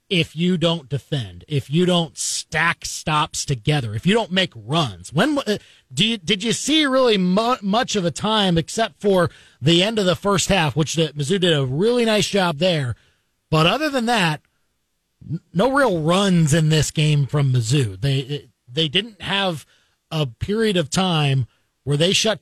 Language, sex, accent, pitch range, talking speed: English, male, American, 145-185 Hz, 185 wpm